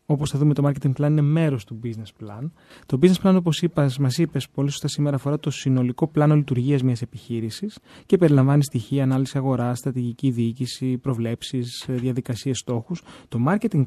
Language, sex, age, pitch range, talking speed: Greek, male, 20-39, 130-155 Hz, 170 wpm